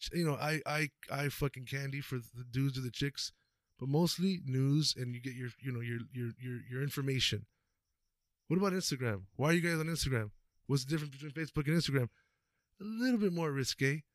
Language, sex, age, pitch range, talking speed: English, male, 20-39, 135-175 Hz, 205 wpm